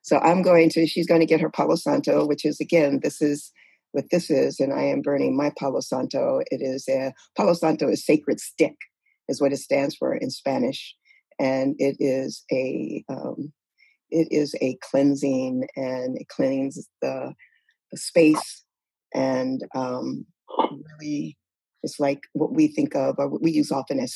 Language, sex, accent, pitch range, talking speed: English, female, American, 140-185 Hz, 175 wpm